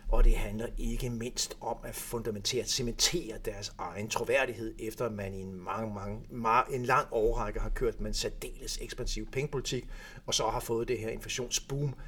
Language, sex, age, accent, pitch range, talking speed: Danish, male, 60-79, native, 110-135 Hz, 175 wpm